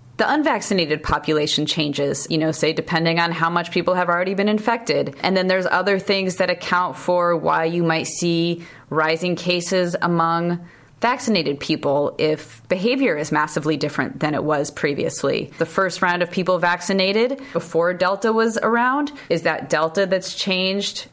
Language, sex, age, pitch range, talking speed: English, female, 20-39, 165-200 Hz, 160 wpm